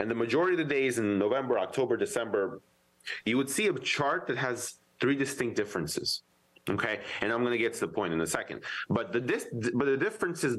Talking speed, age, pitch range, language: 215 wpm, 30-49, 100-135 Hz, English